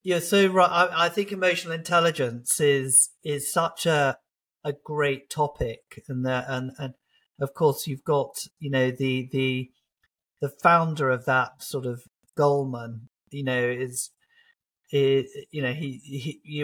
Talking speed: 150 wpm